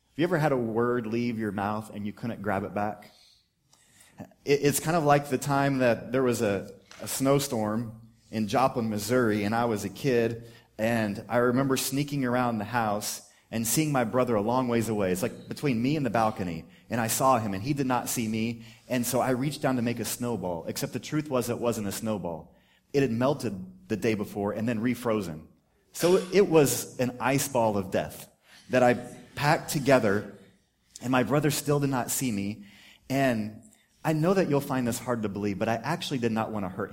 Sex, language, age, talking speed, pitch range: male, English, 30-49, 215 wpm, 110-140 Hz